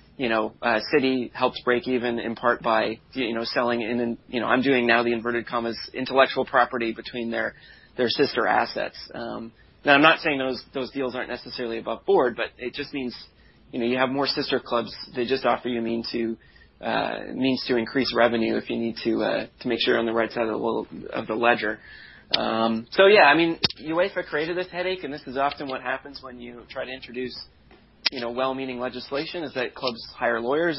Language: English